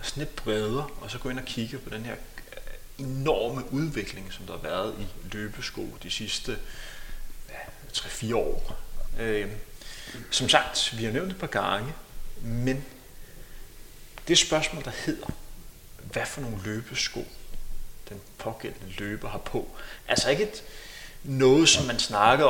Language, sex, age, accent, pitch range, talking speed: Danish, male, 30-49, native, 105-135 Hz, 150 wpm